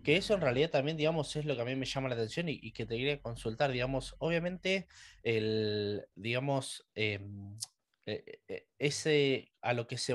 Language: Spanish